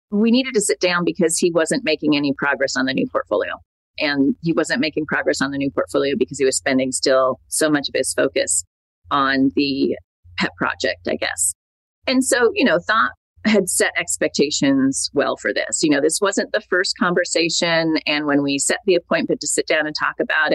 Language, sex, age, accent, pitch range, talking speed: English, female, 30-49, American, 140-205 Hz, 205 wpm